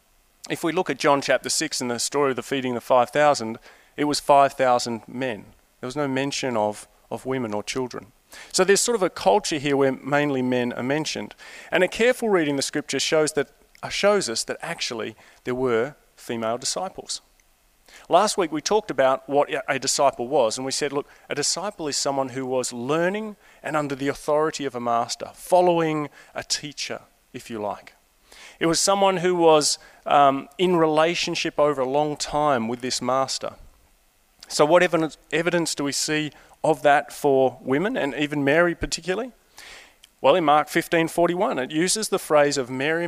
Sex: male